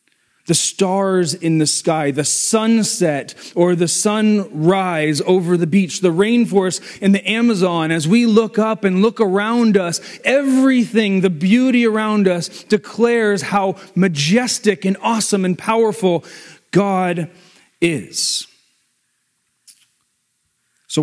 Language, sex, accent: English, male, American